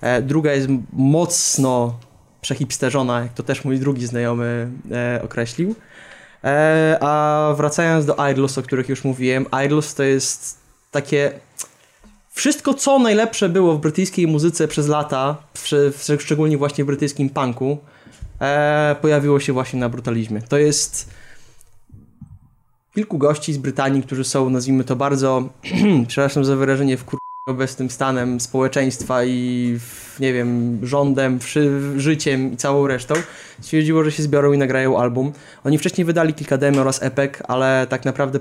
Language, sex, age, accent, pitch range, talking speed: Polish, male, 20-39, native, 125-150 Hz, 135 wpm